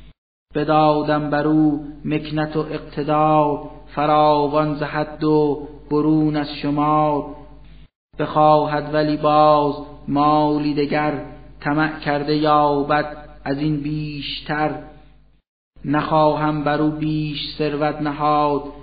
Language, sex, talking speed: Persian, male, 90 wpm